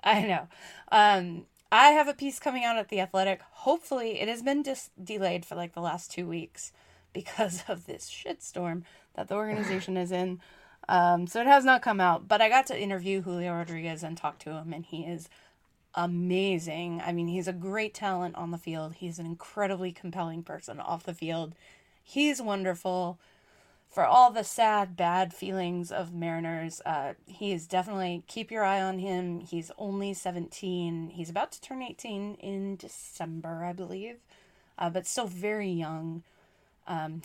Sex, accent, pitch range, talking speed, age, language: female, American, 170-205 Hz, 175 wpm, 20-39, English